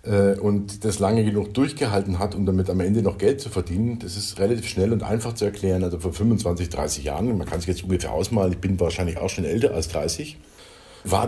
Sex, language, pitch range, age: male, German, 90-105 Hz, 50-69